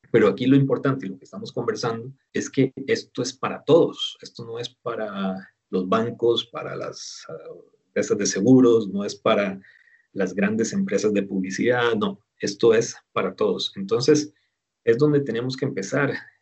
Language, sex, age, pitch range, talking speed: Spanish, male, 40-59, 105-140 Hz, 165 wpm